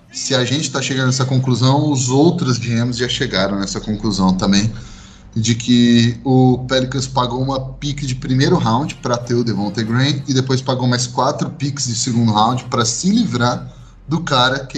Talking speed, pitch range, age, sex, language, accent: 185 wpm, 120-145 Hz, 20-39, male, Portuguese, Brazilian